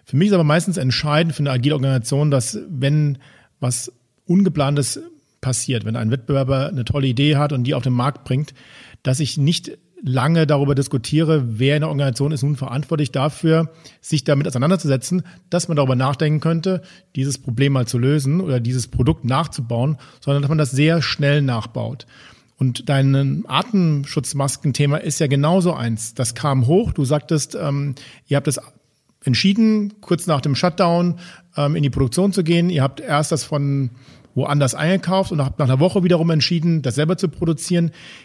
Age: 40-59